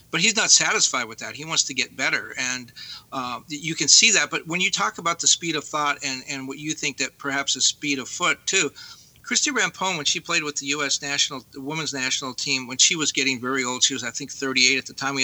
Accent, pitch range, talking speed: American, 135-165 Hz, 260 wpm